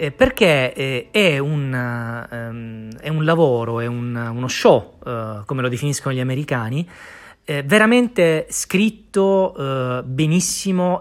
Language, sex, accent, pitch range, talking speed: Italian, male, native, 120-170 Hz, 100 wpm